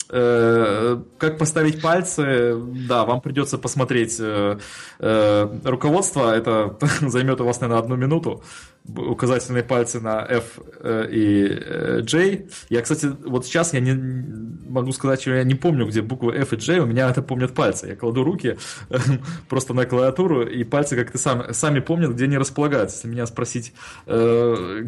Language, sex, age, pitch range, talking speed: Russian, male, 20-39, 115-145 Hz, 145 wpm